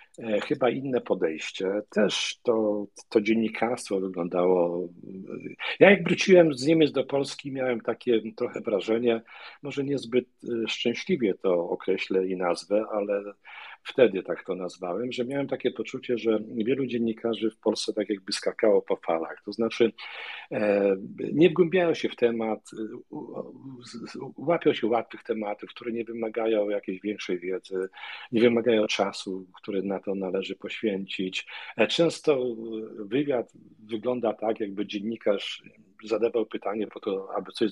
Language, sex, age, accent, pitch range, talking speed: Polish, male, 50-69, native, 95-125 Hz, 130 wpm